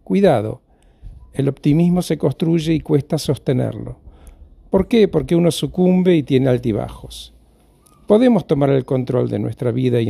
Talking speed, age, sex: 145 wpm, 50-69, male